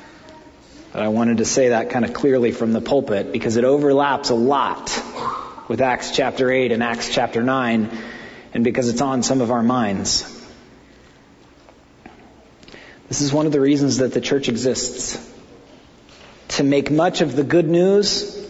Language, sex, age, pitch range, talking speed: English, male, 40-59, 120-145 Hz, 160 wpm